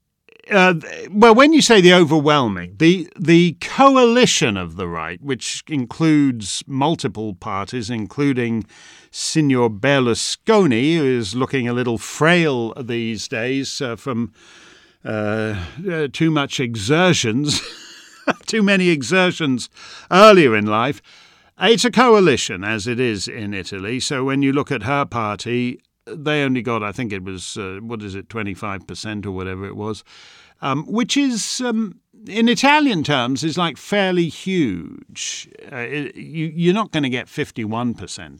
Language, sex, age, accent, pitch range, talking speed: English, male, 50-69, British, 110-170 Hz, 140 wpm